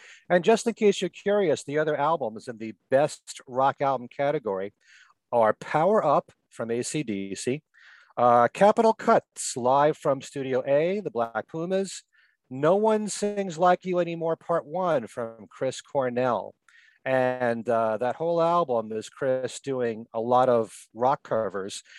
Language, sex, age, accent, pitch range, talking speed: English, male, 40-59, American, 125-180 Hz, 145 wpm